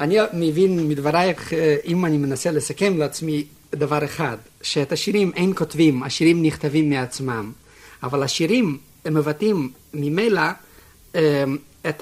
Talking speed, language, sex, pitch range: 115 wpm, Hebrew, male, 135-165 Hz